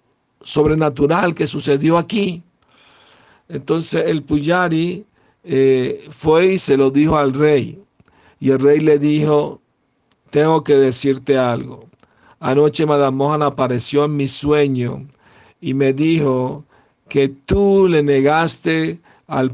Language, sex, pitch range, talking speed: Spanish, male, 130-150 Hz, 115 wpm